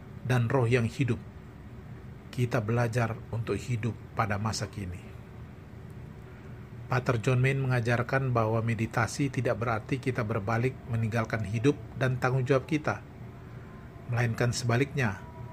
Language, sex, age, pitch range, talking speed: Indonesian, male, 40-59, 115-130 Hz, 110 wpm